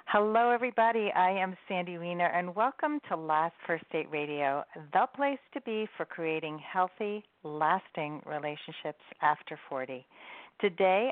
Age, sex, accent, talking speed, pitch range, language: 50-69, female, American, 135 wpm, 155-205 Hz, English